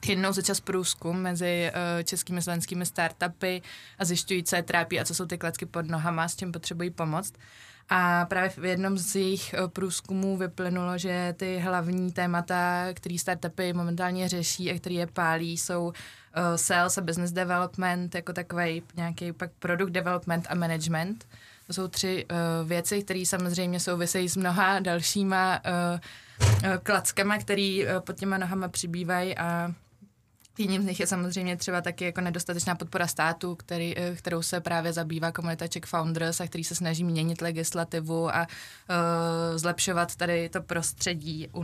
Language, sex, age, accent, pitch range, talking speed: Czech, female, 20-39, native, 170-185 Hz, 155 wpm